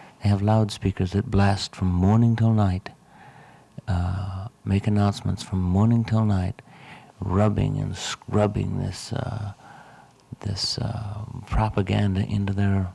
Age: 60-79